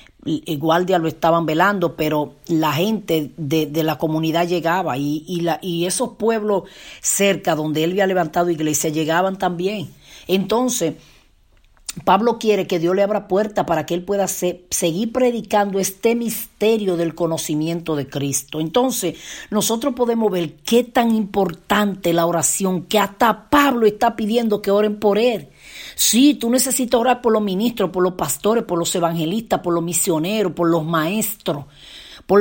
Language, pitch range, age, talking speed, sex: Spanish, 170-235 Hz, 40-59, 160 wpm, female